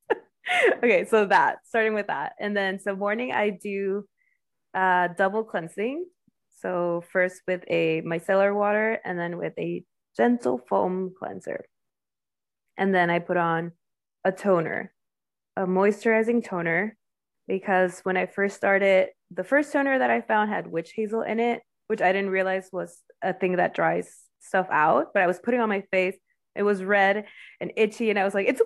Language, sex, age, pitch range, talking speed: English, female, 20-39, 180-235 Hz, 170 wpm